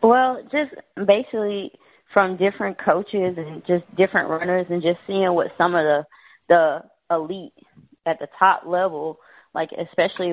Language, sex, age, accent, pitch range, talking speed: English, female, 20-39, American, 155-195 Hz, 145 wpm